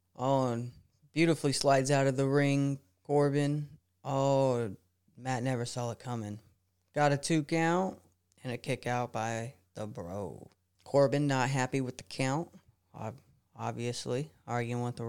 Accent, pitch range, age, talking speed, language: American, 105-135 Hz, 30-49, 145 wpm, English